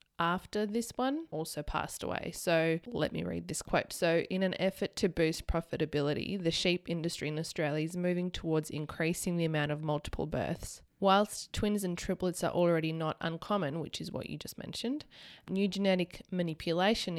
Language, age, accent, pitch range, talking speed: English, 20-39, Australian, 150-180 Hz, 175 wpm